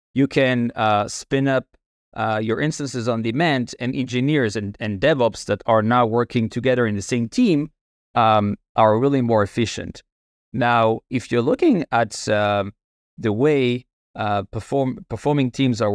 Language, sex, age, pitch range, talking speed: English, male, 20-39, 110-140 Hz, 155 wpm